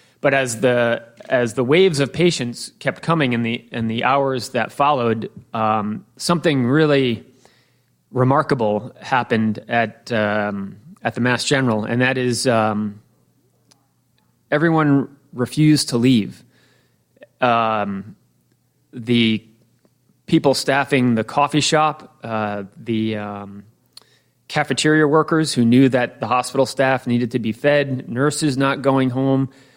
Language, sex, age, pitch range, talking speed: English, male, 30-49, 110-135 Hz, 125 wpm